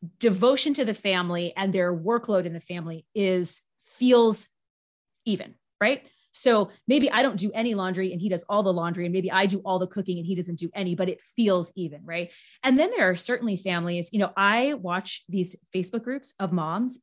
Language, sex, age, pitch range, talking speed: English, female, 30-49, 175-230 Hz, 210 wpm